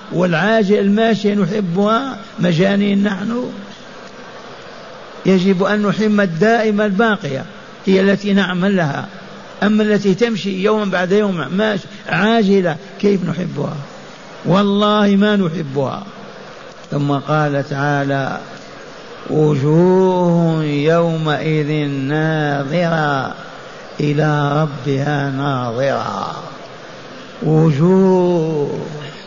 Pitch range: 160-205 Hz